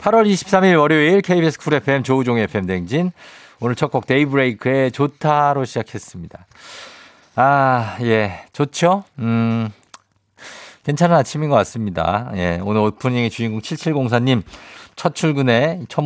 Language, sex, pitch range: Korean, male, 100-140 Hz